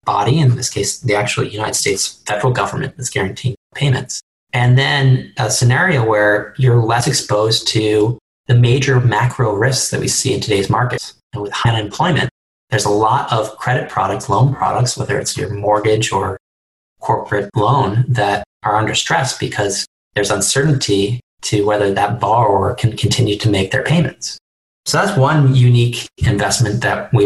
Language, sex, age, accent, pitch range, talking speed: English, male, 30-49, American, 105-130 Hz, 165 wpm